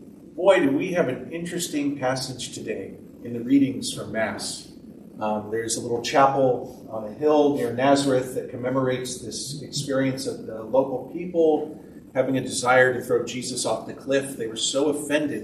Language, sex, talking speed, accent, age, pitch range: English, male, 170 wpm, American, 40-59, 130-165 Hz